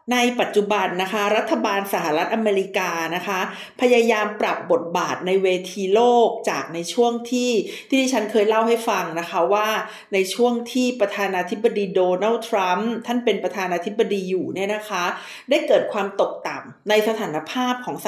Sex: female